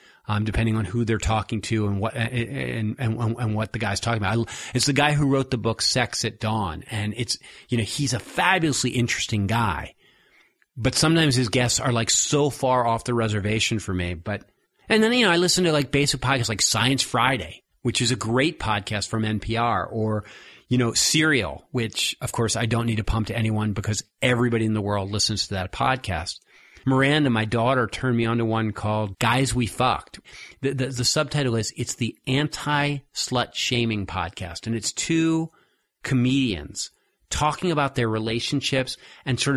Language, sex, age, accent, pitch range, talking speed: English, male, 40-59, American, 110-135 Hz, 190 wpm